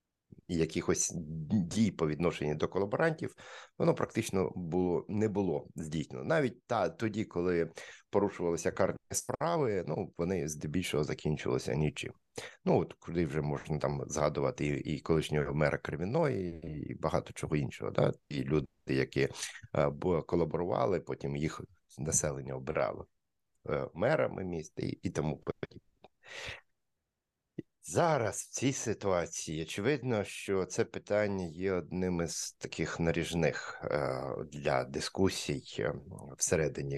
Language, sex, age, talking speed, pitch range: Ukrainian, male, 50-69, 120 wpm, 75-105 Hz